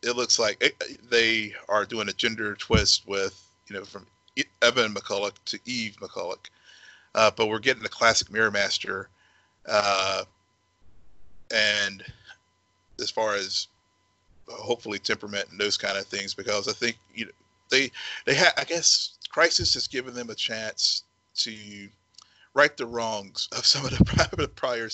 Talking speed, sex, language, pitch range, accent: 155 wpm, male, English, 100-120 Hz, American